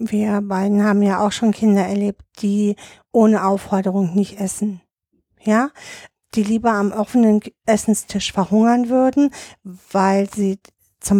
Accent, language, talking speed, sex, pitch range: German, German, 130 wpm, female, 190-220 Hz